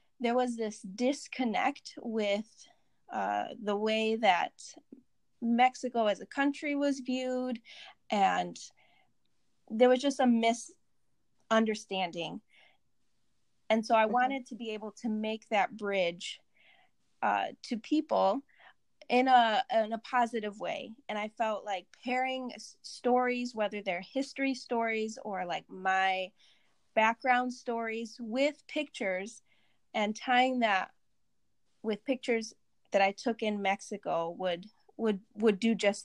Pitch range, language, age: 205-250 Hz, English, 20-39